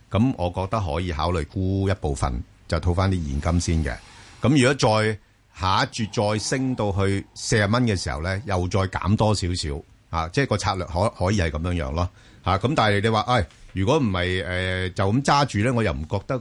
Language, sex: Chinese, male